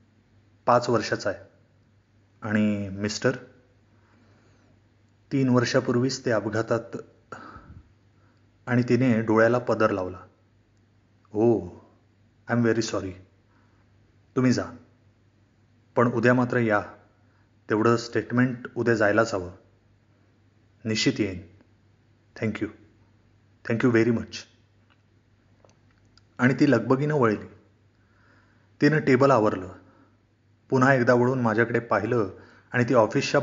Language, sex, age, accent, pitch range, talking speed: Marathi, male, 30-49, native, 105-120 Hz, 90 wpm